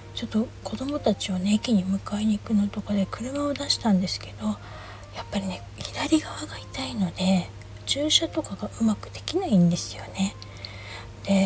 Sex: female